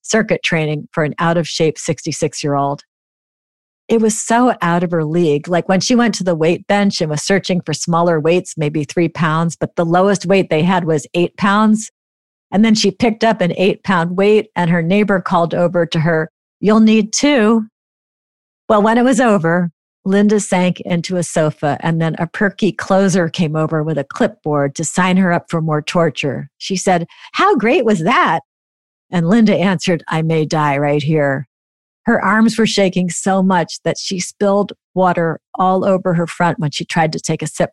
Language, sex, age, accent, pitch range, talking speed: English, female, 50-69, American, 160-200 Hz, 190 wpm